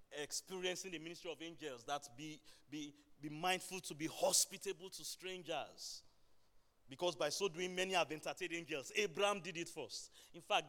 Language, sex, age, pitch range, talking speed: English, male, 30-49, 140-195 Hz, 155 wpm